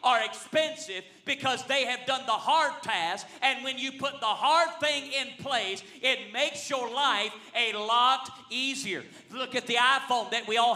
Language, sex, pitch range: English, male, 245-270 Hz